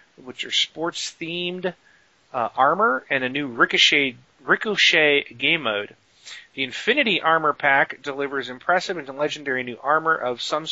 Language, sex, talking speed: English, male, 135 wpm